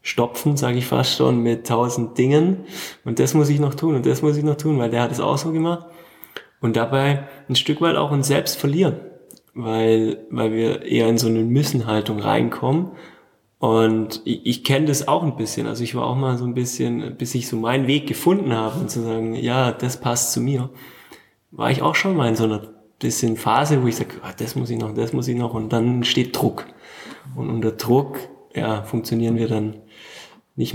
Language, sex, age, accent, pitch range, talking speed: German, male, 20-39, German, 110-140 Hz, 215 wpm